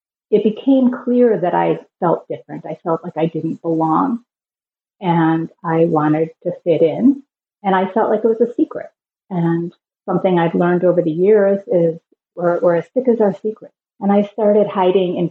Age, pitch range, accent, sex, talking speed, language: 30-49, 170-205 Hz, American, female, 185 wpm, English